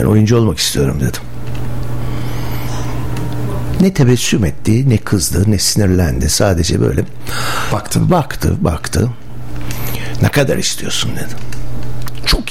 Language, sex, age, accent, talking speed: Turkish, male, 60-79, native, 105 wpm